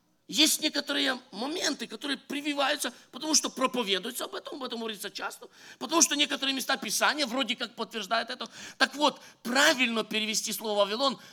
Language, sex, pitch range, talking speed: English, male, 210-265 Hz, 155 wpm